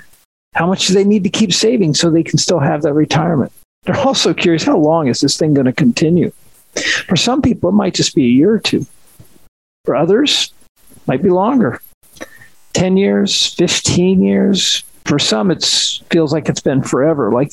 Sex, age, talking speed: male, 50-69, 190 wpm